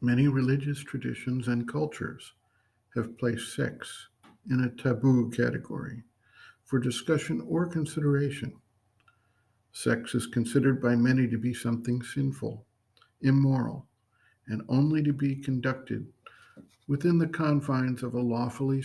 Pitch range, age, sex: 115-145 Hz, 60-79, male